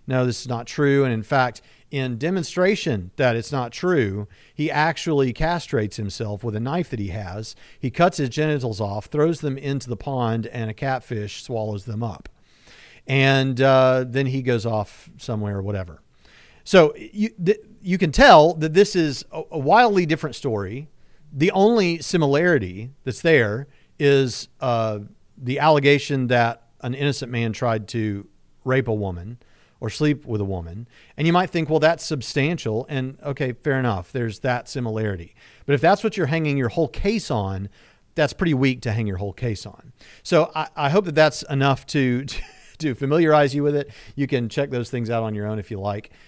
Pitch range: 110-150 Hz